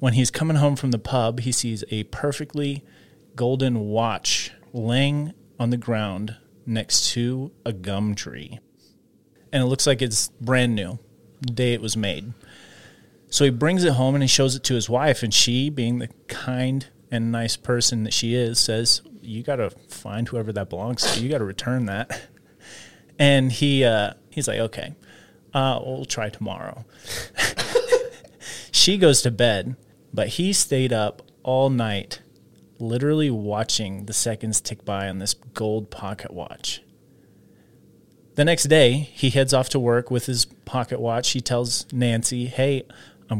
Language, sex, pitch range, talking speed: English, male, 110-135 Hz, 165 wpm